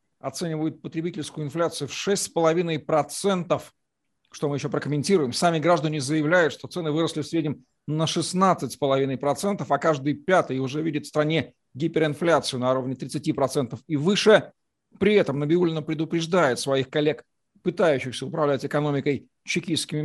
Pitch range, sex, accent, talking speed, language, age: 140-170 Hz, male, native, 125 wpm, Russian, 40-59